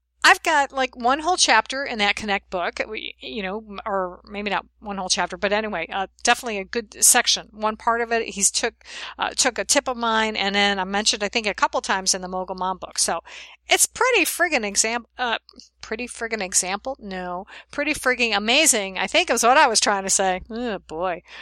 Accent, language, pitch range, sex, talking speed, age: American, English, 195-245 Hz, female, 215 wpm, 50-69